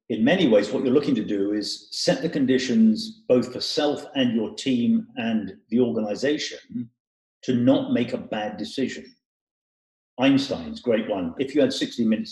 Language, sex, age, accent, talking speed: English, male, 50-69, British, 170 wpm